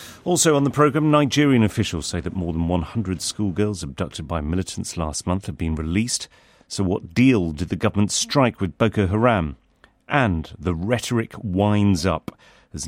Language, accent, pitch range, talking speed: English, British, 85-110 Hz, 170 wpm